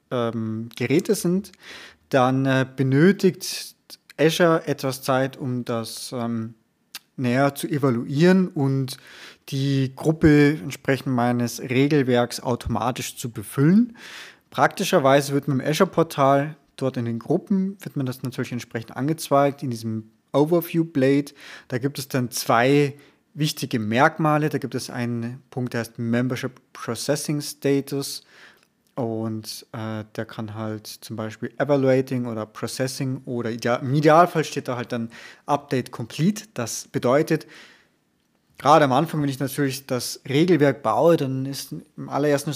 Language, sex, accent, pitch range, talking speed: German, male, German, 120-150 Hz, 135 wpm